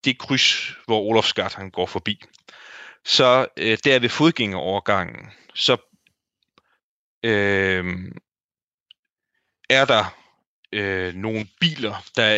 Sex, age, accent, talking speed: male, 30-49, native, 80 wpm